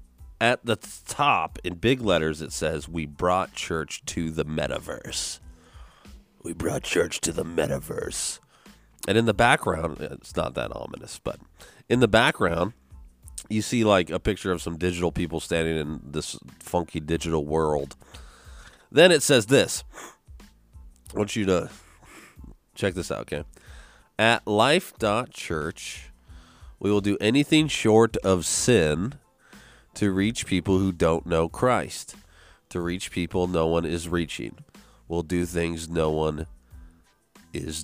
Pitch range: 80-110 Hz